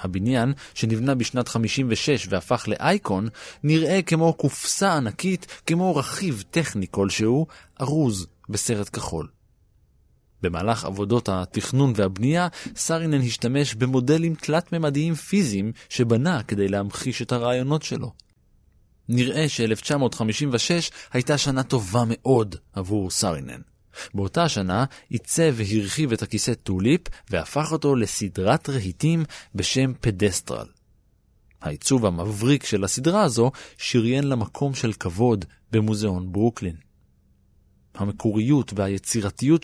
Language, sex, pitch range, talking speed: Hebrew, male, 105-145 Hz, 100 wpm